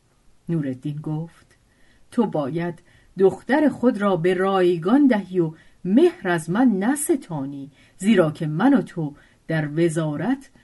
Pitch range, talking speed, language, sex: 145-215 Hz, 125 wpm, Persian, female